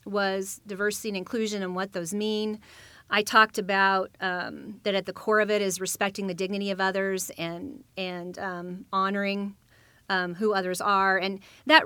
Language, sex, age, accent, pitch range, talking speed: English, female, 30-49, American, 185-210 Hz, 170 wpm